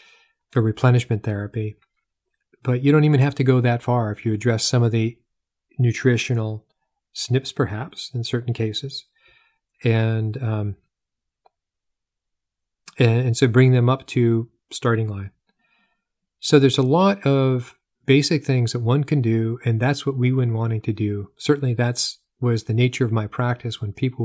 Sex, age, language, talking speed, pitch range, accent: male, 40-59, English, 155 wpm, 115-135 Hz, American